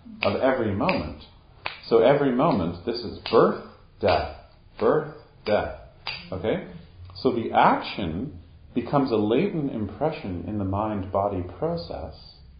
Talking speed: 115 wpm